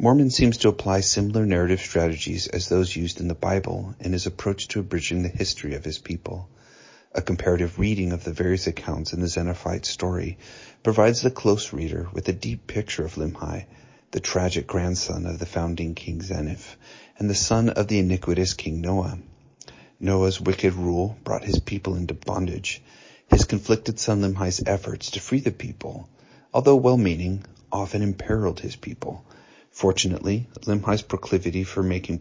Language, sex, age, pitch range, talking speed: English, male, 40-59, 90-105 Hz, 165 wpm